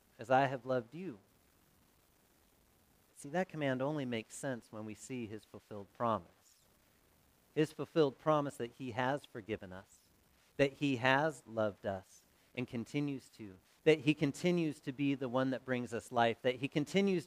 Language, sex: English, male